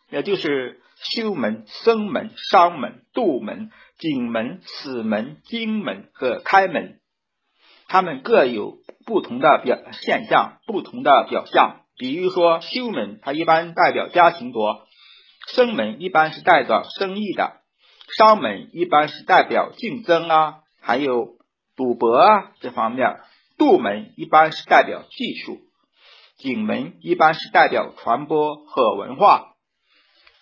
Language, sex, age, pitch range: Chinese, male, 50-69, 160-260 Hz